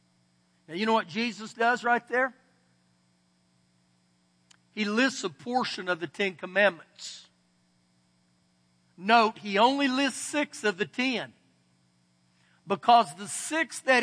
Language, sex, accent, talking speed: English, male, American, 120 wpm